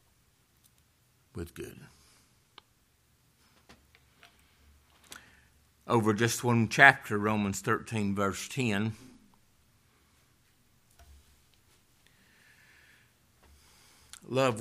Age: 60-79